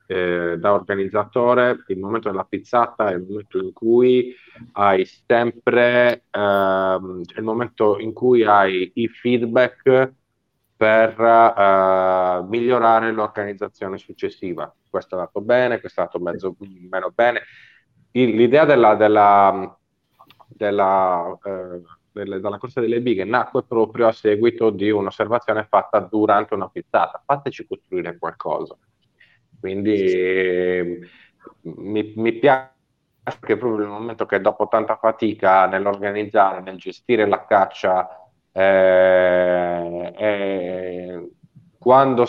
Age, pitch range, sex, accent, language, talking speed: 30-49, 95-115 Hz, male, native, Italian, 110 wpm